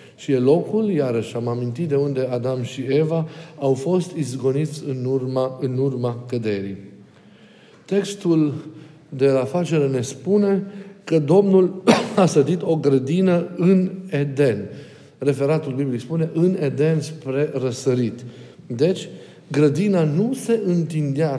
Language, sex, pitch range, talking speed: Romanian, male, 135-165 Hz, 125 wpm